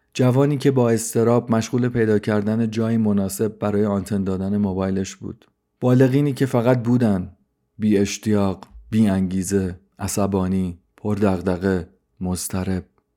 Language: Persian